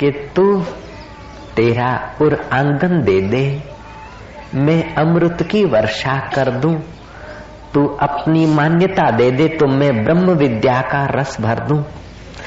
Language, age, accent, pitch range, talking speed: Hindi, 50-69, native, 115-155 Hz, 125 wpm